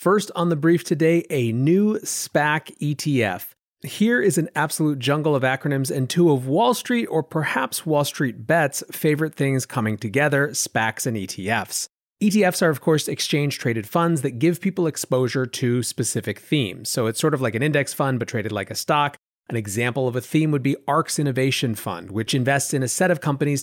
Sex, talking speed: male, 195 wpm